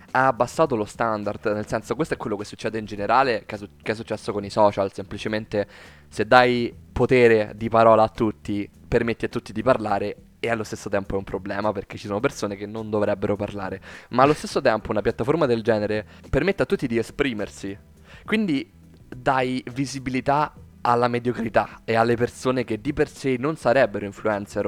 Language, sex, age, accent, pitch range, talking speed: Italian, male, 20-39, native, 105-130 Hz, 185 wpm